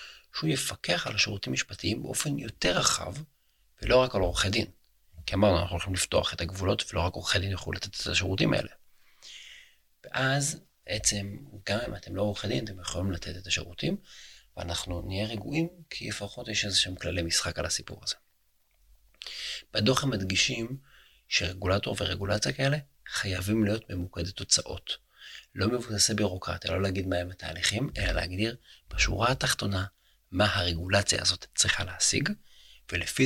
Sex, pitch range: male, 90-105 Hz